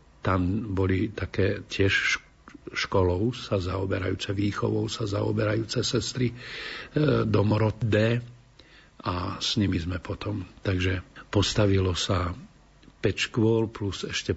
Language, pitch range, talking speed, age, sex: Slovak, 90-105 Hz, 100 wpm, 50-69, male